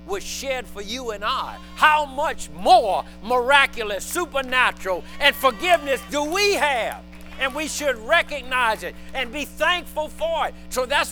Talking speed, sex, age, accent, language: 150 wpm, male, 60-79, American, English